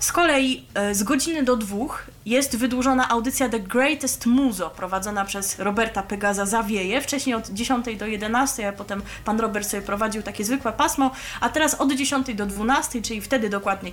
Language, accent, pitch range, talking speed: Polish, native, 190-255 Hz, 170 wpm